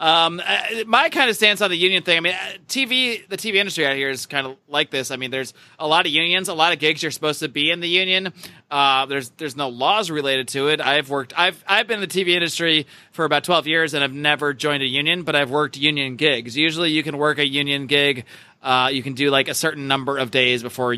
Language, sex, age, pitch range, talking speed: English, male, 30-49, 135-175 Hz, 255 wpm